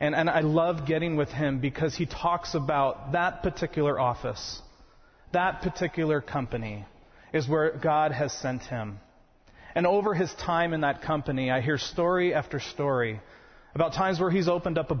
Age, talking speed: 30-49, 170 wpm